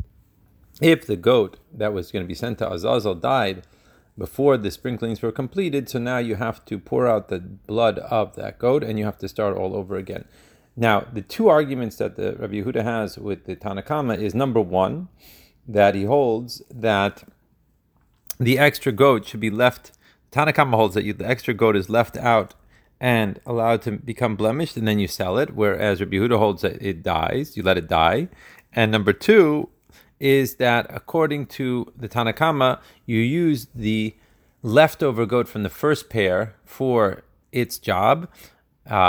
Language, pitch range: Hebrew, 105-130 Hz